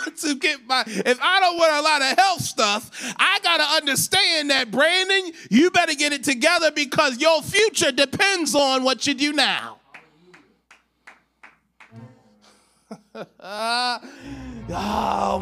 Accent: American